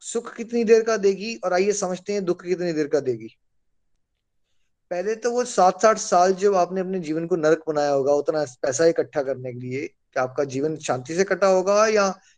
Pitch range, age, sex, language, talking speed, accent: 130-185 Hz, 20-39, male, Hindi, 205 wpm, native